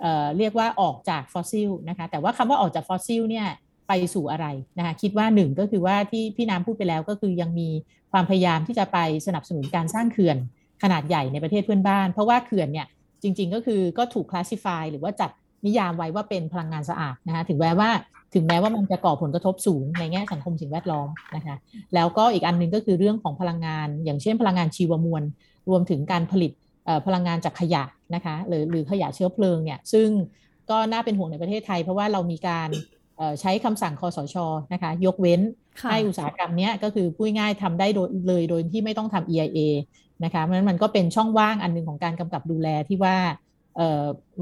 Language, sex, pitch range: Thai, female, 165-205 Hz